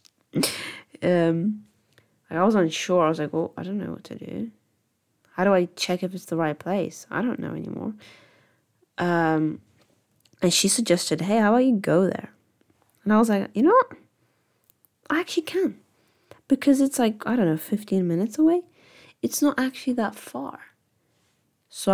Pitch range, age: 155-205 Hz, 20-39